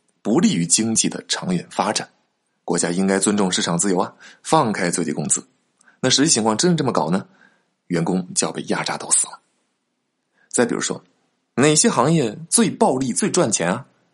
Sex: male